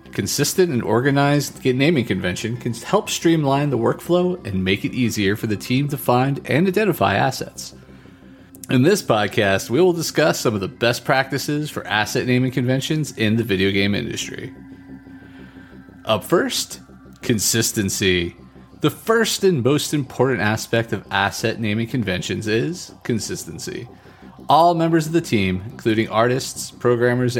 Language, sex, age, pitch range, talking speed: English, male, 30-49, 105-155 Hz, 140 wpm